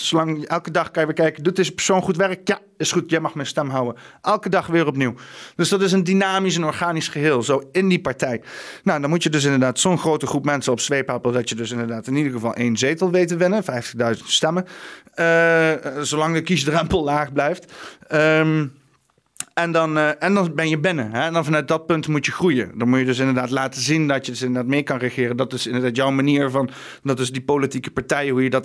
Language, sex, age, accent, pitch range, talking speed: Dutch, male, 40-59, Dutch, 135-170 Hz, 235 wpm